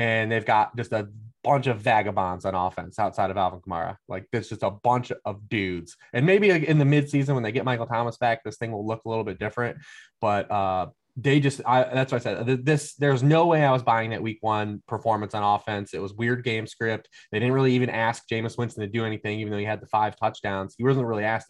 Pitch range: 105-125 Hz